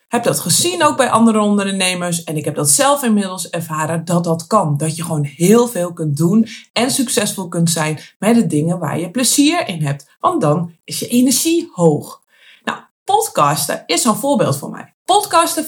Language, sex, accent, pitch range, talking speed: Dutch, female, Dutch, 165-240 Hz, 190 wpm